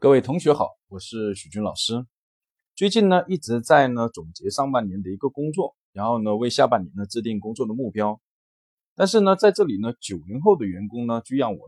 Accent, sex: native, male